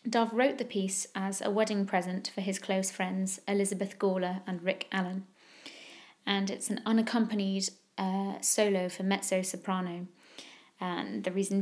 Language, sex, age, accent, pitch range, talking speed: English, female, 20-39, British, 190-210 Hz, 145 wpm